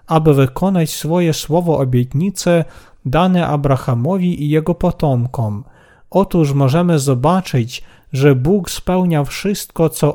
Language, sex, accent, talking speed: Polish, male, native, 105 wpm